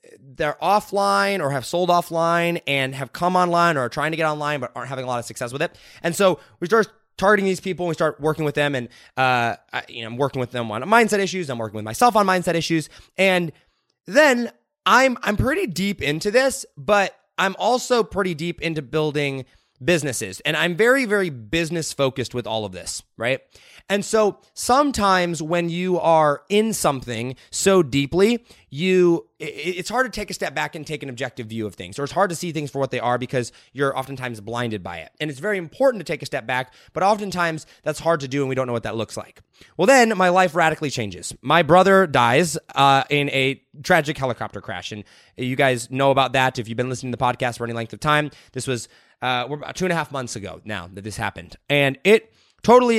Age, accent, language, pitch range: 20-39, American, English, 125-180 Hz